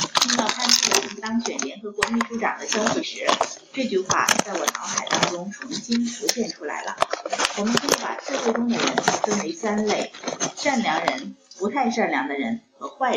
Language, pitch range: Chinese, 210-275 Hz